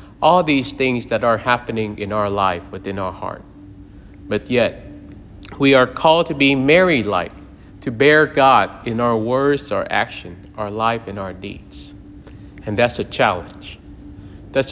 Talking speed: 155 wpm